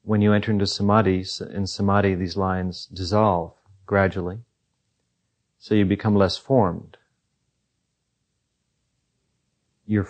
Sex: male